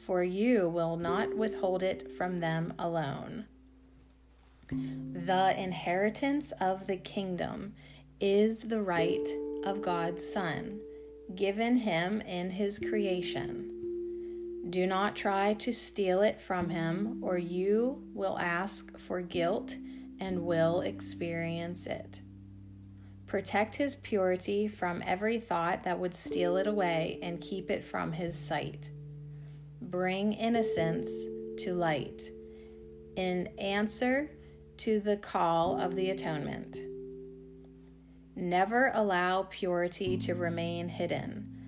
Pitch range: 145-200 Hz